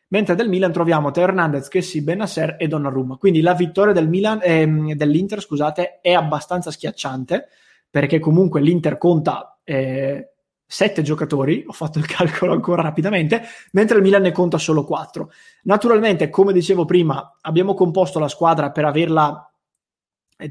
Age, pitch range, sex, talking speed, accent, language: 20-39, 150-180 Hz, male, 150 wpm, Italian, English